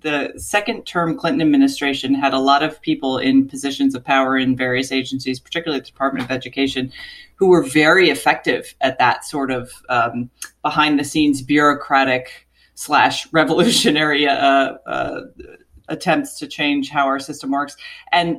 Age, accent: 40-59, American